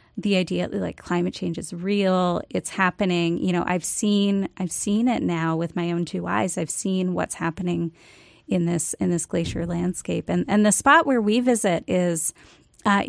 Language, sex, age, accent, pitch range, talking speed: English, female, 30-49, American, 170-205 Hz, 195 wpm